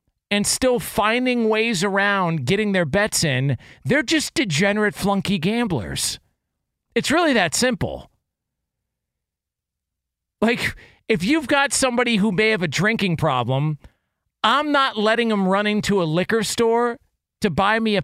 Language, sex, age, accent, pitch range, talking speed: English, male, 40-59, American, 155-220 Hz, 140 wpm